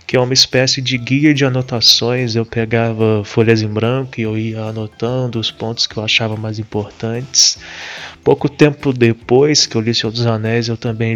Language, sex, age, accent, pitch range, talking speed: Portuguese, male, 20-39, Brazilian, 115-130 Hz, 195 wpm